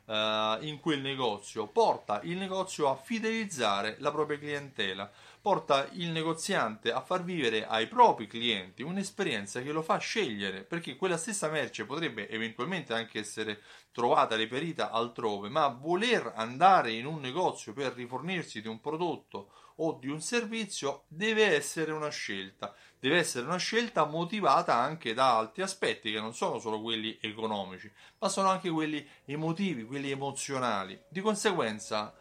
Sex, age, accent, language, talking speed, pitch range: male, 30-49, native, Italian, 145 wpm, 115-175 Hz